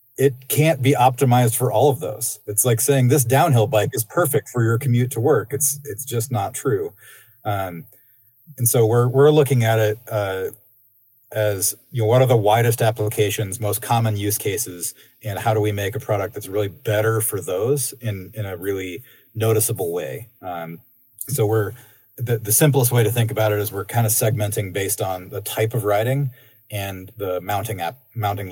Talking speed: 195 wpm